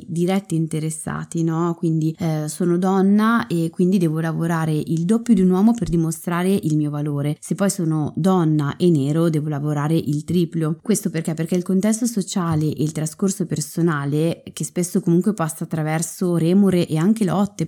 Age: 20-39